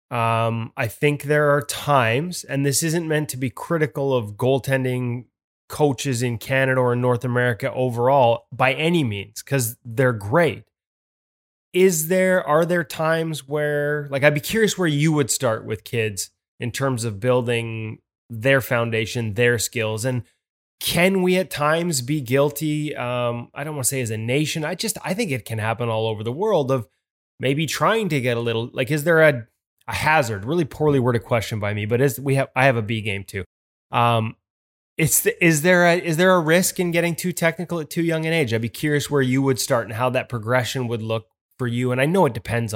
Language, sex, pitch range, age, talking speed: English, male, 115-155 Hz, 20-39, 210 wpm